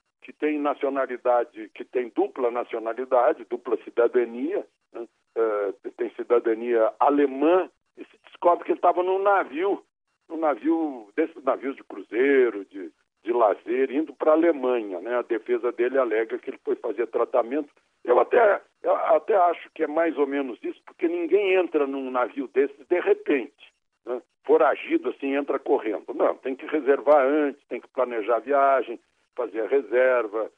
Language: Portuguese